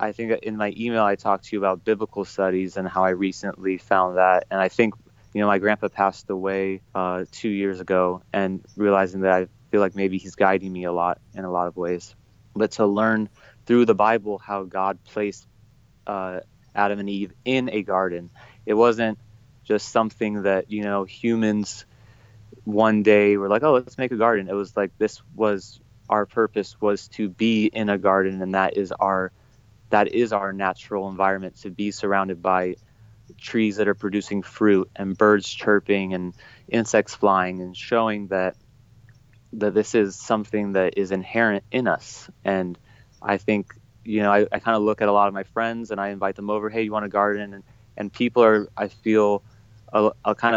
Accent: American